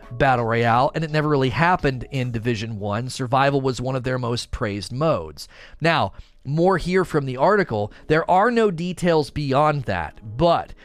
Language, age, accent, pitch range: English, 30-49, American, 130-180 Hz